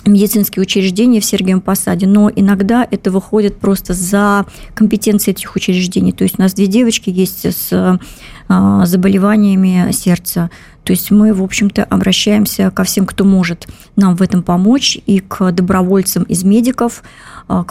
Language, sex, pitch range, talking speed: Russian, male, 180-205 Hz, 150 wpm